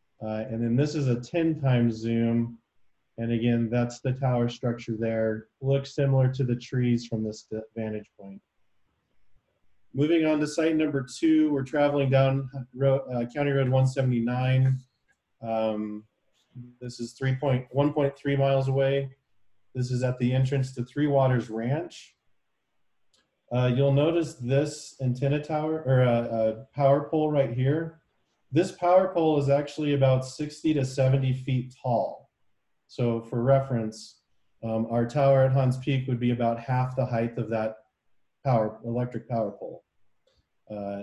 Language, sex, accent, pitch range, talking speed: English, male, American, 115-140 Hz, 145 wpm